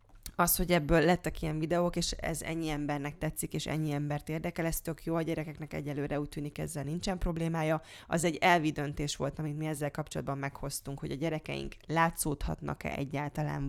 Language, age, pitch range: Hungarian, 20-39, 145-165 Hz